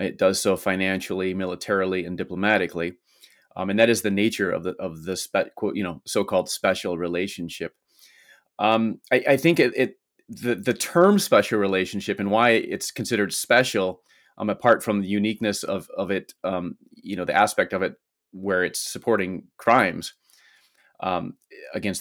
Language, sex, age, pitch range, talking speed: English, male, 30-49, 100-125 Hz, 170 wpm